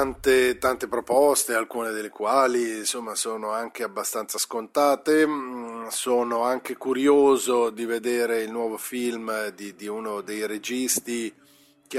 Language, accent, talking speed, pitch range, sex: Italian, native, 120 wpm, 115-145 Hz, male